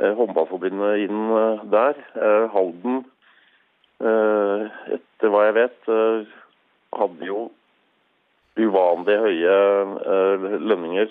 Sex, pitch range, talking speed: male, 95-110 Hz, 70 wpm